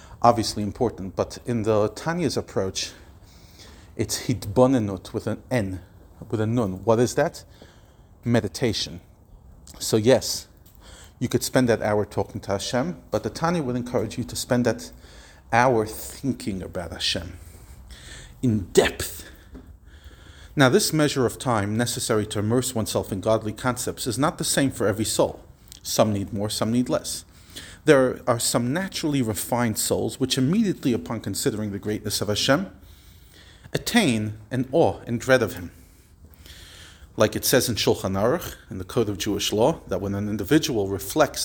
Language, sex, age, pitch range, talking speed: English, male, 40-59, 90-125 Hz, 155 wpm